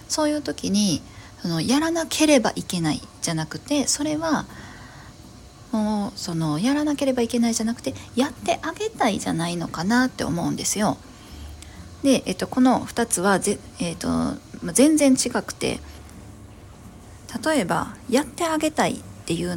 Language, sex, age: Japanese, female, 40-59